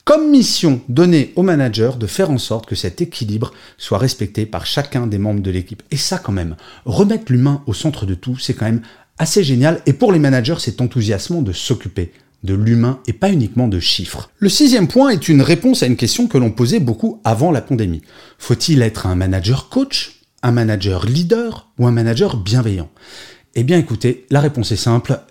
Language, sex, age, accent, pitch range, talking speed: French, male, 40-59, French, 110-150 Hz, 200 wpm